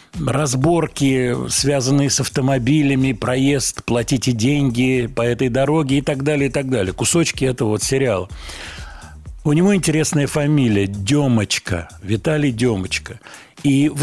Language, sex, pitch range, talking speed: Russian, male, 115-150 Hz, 130 wpm